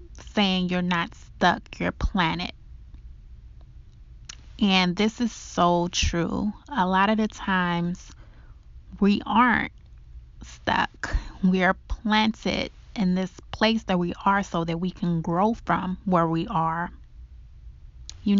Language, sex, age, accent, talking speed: English, female, 20-39, American, 125 wpm